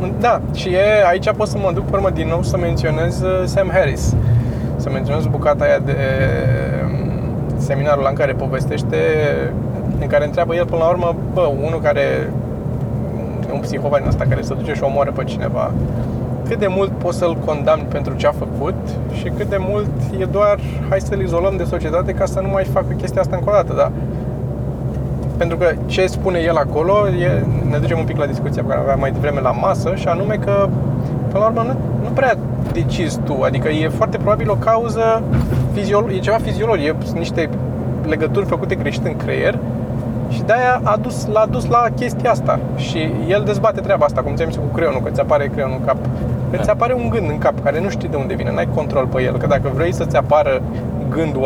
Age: 20-39